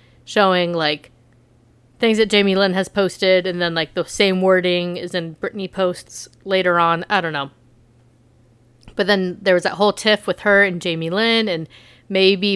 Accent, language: American, English